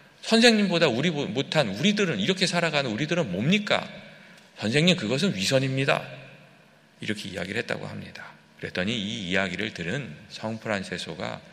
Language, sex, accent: Korean, male, native